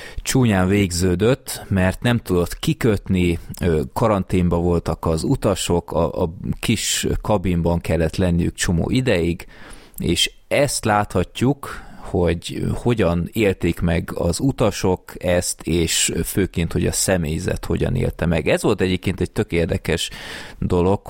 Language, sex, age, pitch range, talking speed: Hungarian, male, 30-49, 85-105 Hz, 120 wpm